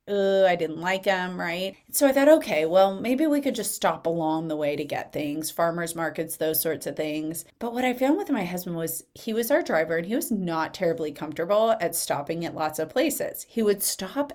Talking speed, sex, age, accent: 225 wpm, female, 30-49, American